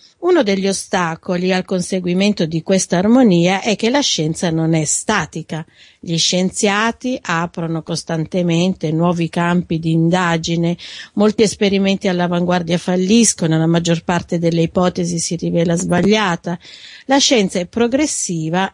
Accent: native